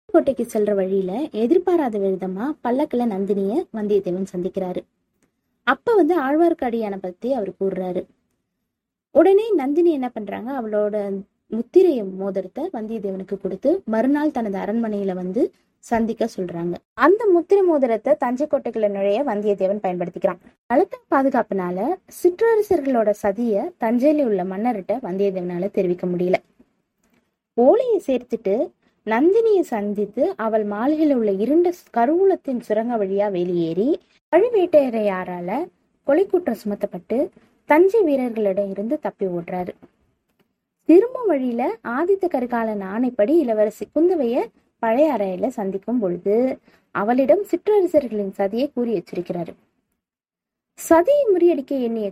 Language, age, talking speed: Tamil, 20-39, 70 wpm